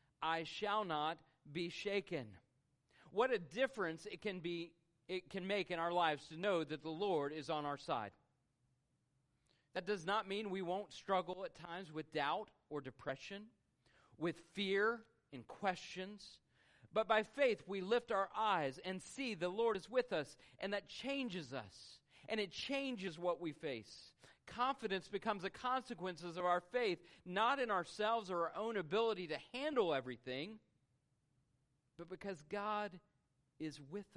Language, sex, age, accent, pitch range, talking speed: English, male, 40-59, American, 140-195 Hz, 155 wpm